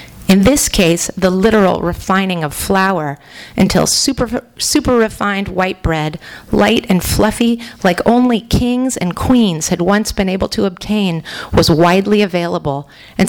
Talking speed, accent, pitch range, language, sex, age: 145 wpm, American, 165-205 Hz, English, female, 40-59